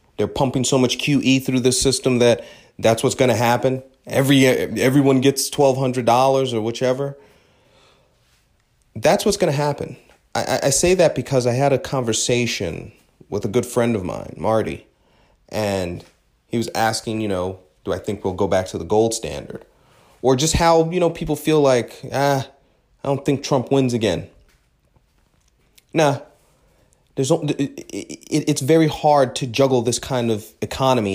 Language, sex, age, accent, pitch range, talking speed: English, male, 30-49, American, 115-140 Hz, 160 wpm